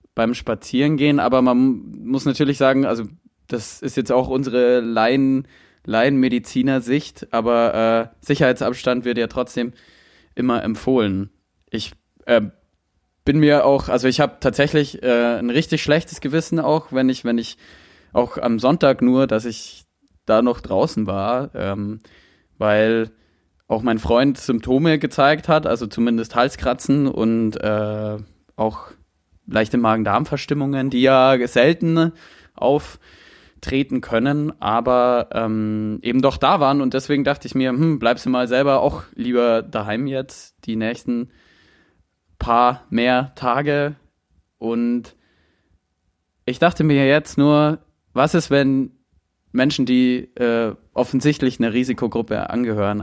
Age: 20-39